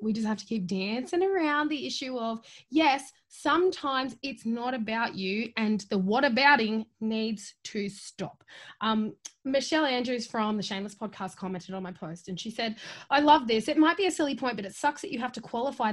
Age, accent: 20-39, Australian